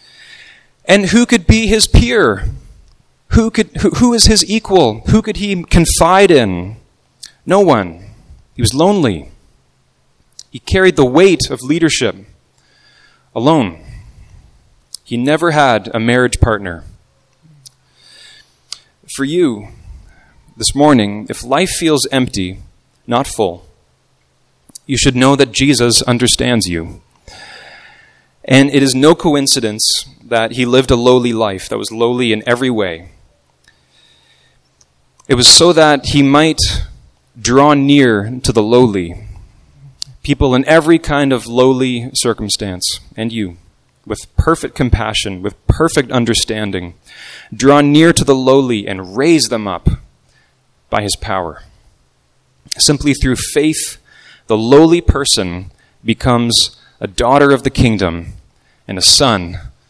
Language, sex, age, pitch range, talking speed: English, male, 30-49, 100-145 Hz, 125 wpm